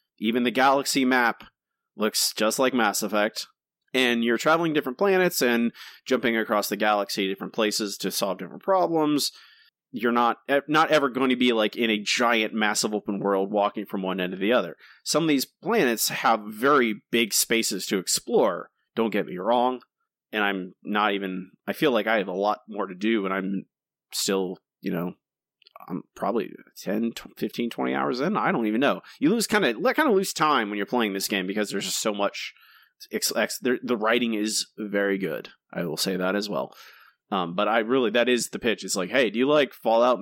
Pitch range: 100-130 Hz